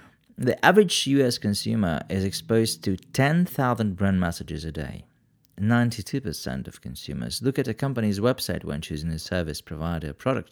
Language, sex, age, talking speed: English, male, 40-59, 155 wpm